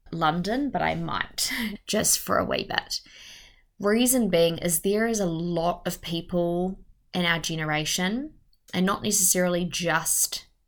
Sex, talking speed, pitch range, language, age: female, 140 wpm, 165-195 Hz, English, 20-39